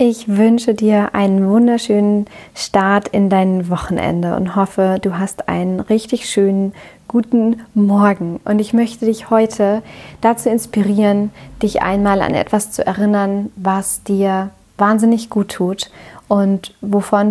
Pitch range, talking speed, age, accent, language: 195-225 Hz, 130 wpm, 30-49, German, German